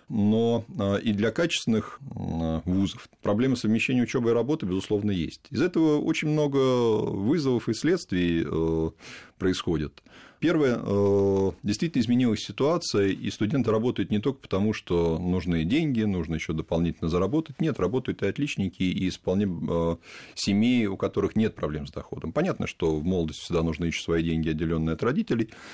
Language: Russian